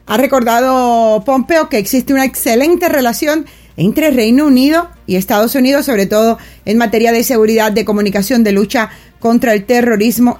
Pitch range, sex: 200-235 Hz, female